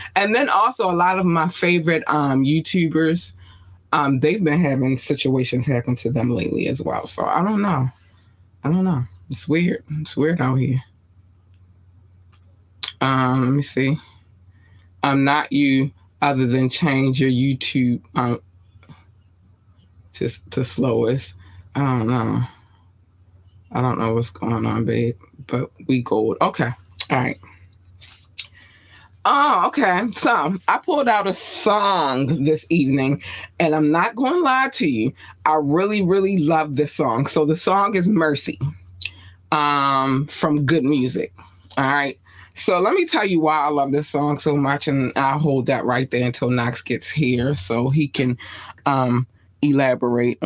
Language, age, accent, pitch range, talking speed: English, 20-39, American, 95-150 Hz, 150 wpm